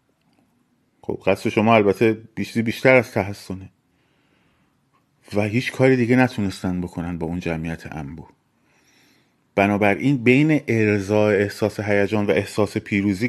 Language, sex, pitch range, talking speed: Persian, male, 100-130 Hz, 115 wpm